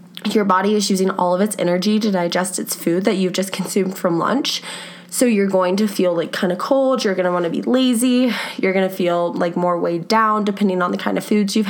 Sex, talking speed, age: female, 250 wpm, 20-39